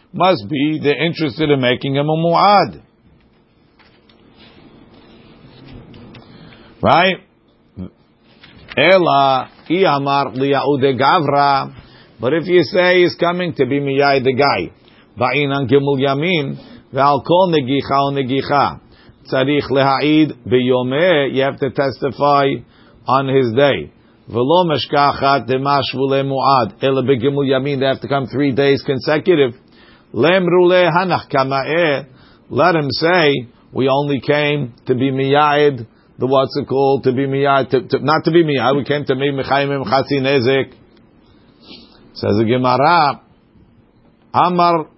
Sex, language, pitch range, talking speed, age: male, English, 130-145 Hz, 120 wpm, 50-69